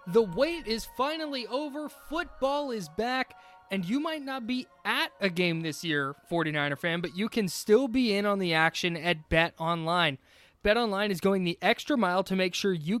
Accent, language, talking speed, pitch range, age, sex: American, English, 195 wpm, 165-215 Hz, 20-39, male